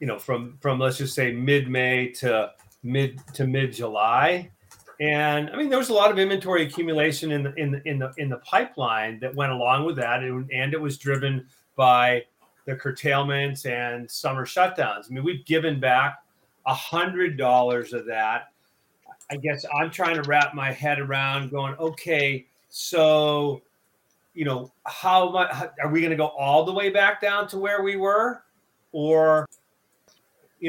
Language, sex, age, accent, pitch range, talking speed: English, male, 40-59, American, 130-160 Hz, 175 wpm